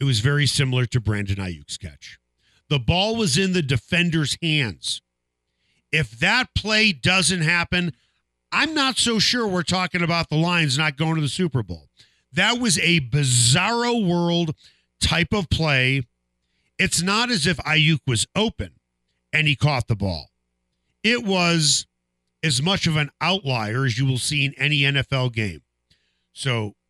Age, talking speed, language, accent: 50-69, 160 wpm, English, American